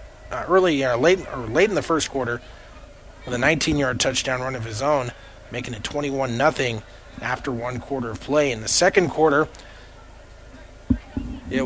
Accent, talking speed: American, 170 wpm